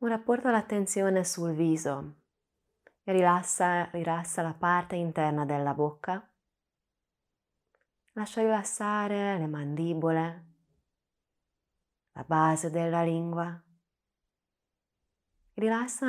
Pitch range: 150-195 Hz